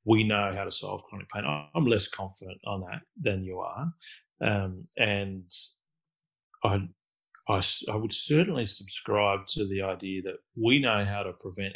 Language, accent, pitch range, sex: English, Australian, 95-115 Hz, male